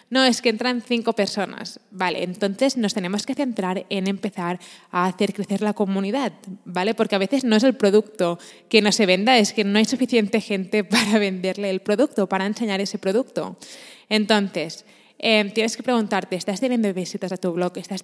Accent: Spanish